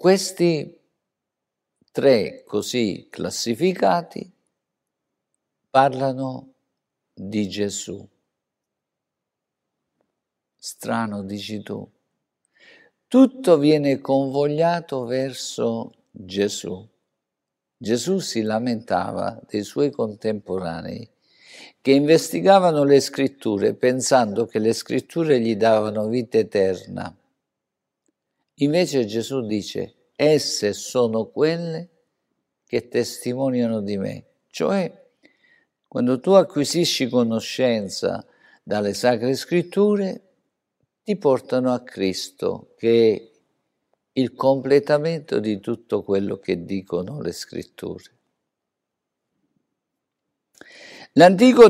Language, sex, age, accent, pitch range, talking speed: Italian, male, 50-69, native, 110-165 Hz, 80 wpm